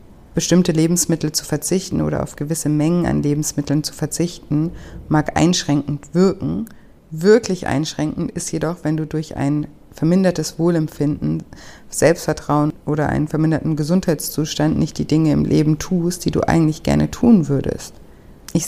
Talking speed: 140 wpm